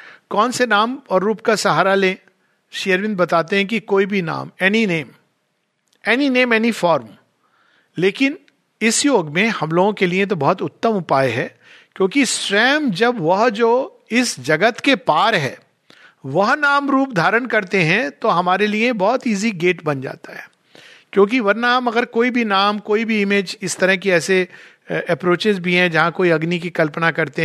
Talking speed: 175 wpm